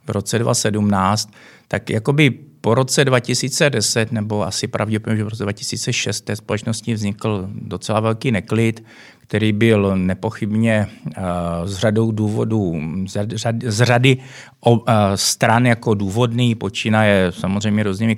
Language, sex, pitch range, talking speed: Czech, male, 100-115 Hz, 115 wpm